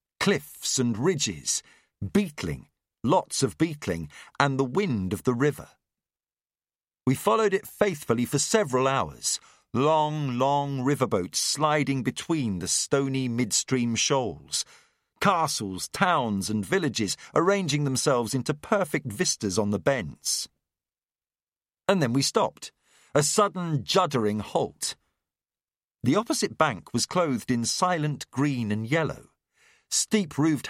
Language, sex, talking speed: English, male, 115 wpm